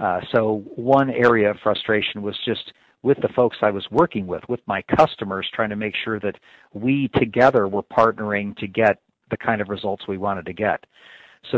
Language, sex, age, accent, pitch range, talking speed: English, male, 50-69, American, 100-115 Hz, 195 wpm